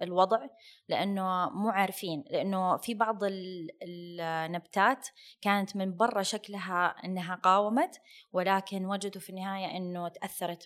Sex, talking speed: female, 115 wpm